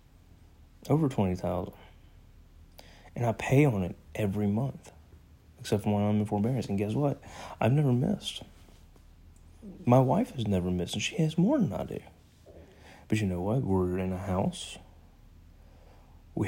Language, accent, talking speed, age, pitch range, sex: English, American, 155 wpm, 30-49, 85-105 Hz, male